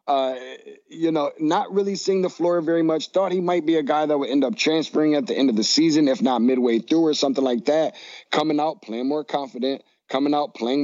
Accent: American